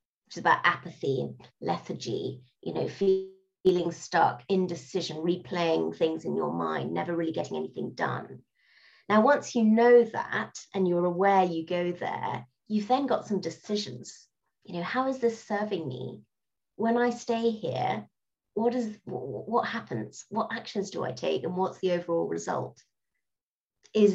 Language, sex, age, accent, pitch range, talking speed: English, female, 30-49, British, 165-205 Hz, 150 wpm